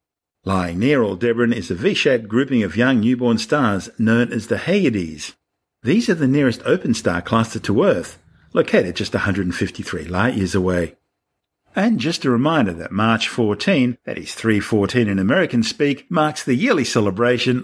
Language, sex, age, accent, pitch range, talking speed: English, male, 50-69, Australian, 105-135 Hz, 155 wpm